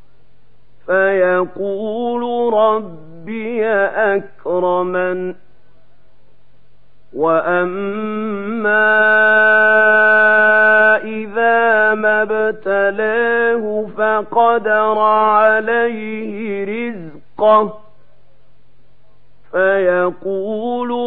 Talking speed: 30 wpm